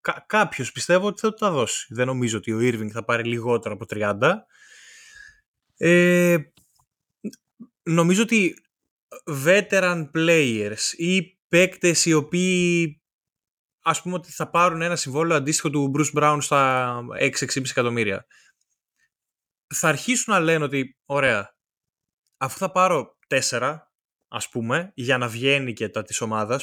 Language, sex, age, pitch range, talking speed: Greek, male, 20-39, 130-185 Hz, 130 wpm